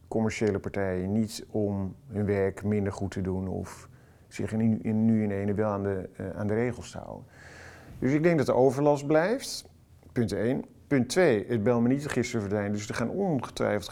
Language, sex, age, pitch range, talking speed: Dutch, male, 50-69, 100-120 Hz, 200 wpm